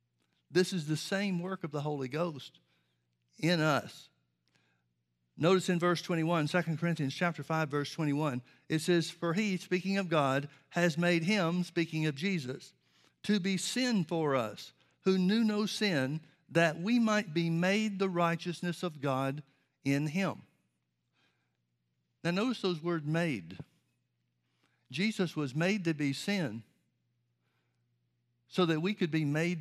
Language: English